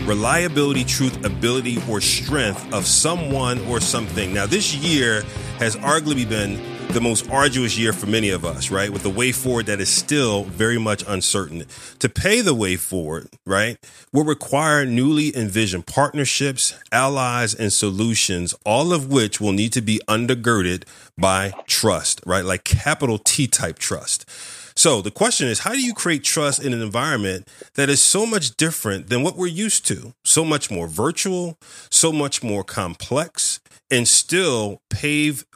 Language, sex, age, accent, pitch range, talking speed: English, male, 40-59, American, 105-145 Hz, 165 wpm